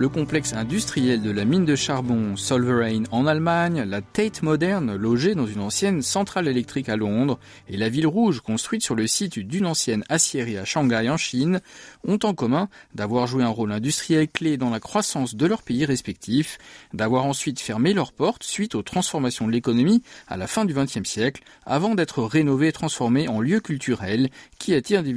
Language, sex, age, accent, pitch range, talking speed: French, male, 40-59, French, 120-180 Hz, 190 wpm